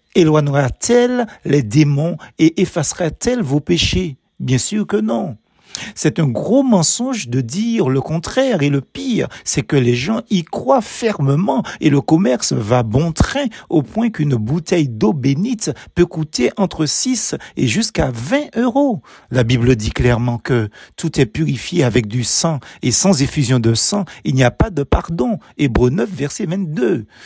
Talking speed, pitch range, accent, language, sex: 165 wpm, 125-195 Hz, French, French, male